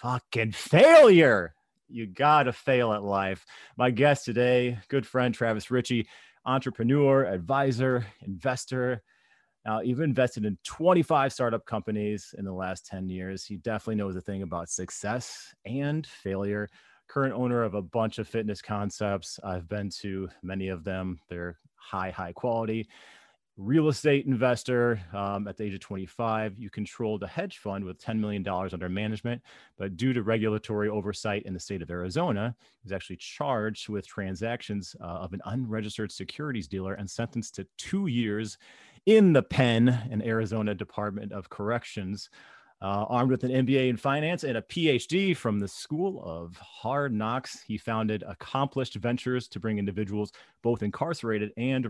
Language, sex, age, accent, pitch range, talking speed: English, male, 30-49, American, 100-125 Hz, 160 wpm